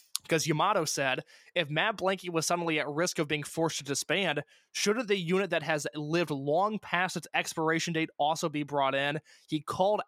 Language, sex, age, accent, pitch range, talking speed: English, male, 20-39, American, 155-195 Hz, 190 wpm